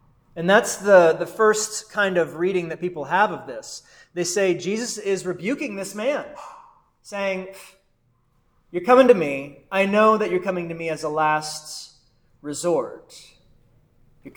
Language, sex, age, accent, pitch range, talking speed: English, male, 30-49, American, 150-205 Hz, 155 wpm